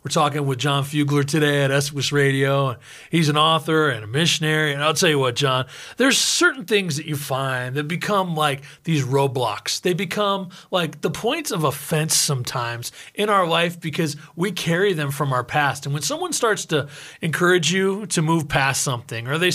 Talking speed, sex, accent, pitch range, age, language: 195 wpm, male, American, 145-185 Hz, 30-49, English